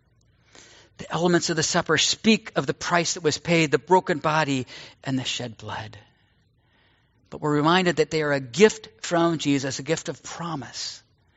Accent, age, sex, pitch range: American, 50-69, male, 115-140 Hz